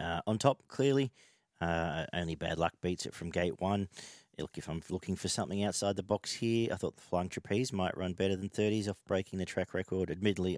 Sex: male